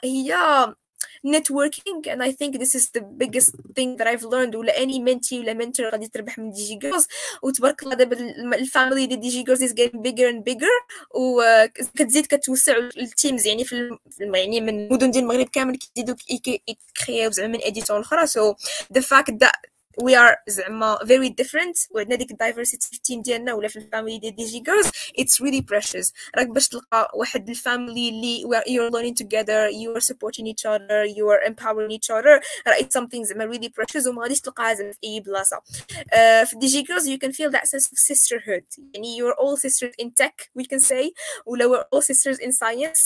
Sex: female